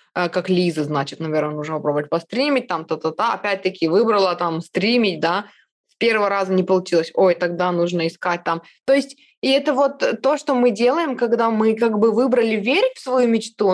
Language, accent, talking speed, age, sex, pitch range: Russian, native, 185 wpm, 20-39, female, 170-220 Hz